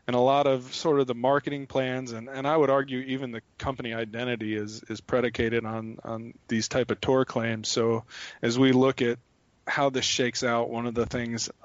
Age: 20-39